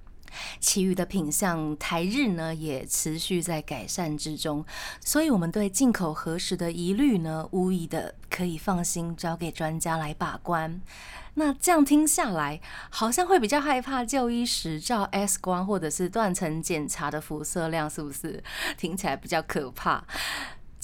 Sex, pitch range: female, 160-220 Hz